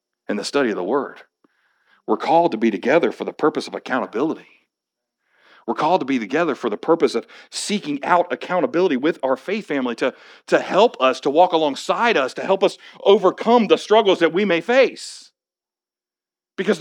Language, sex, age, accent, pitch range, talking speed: English, male, 50-69, American, 200-270 Hz, 180 wpm